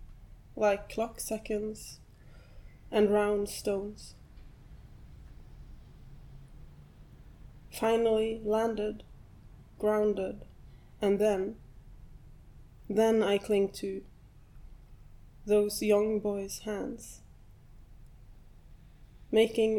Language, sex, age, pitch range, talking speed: English, female, 20-39, 140-215 Hz, 60 wpm